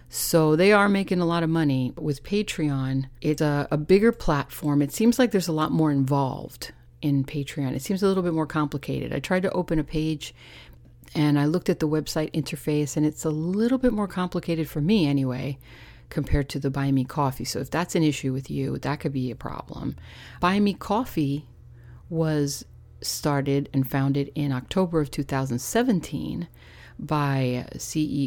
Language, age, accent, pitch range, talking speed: English, 40-59, American, 135-170 Hz, 180 wpm